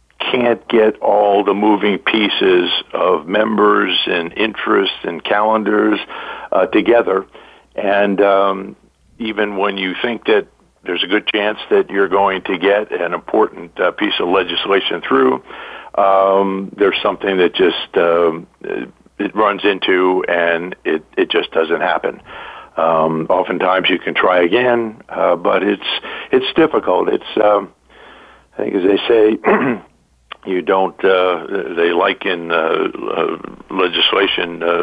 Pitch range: 90-120 Hz